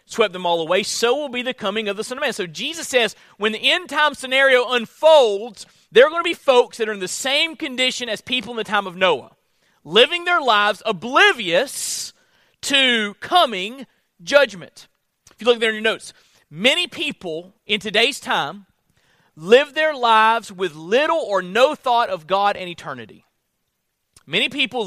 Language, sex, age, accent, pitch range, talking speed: English, male, 40-59, American, 205-295 Hz, 180 wpm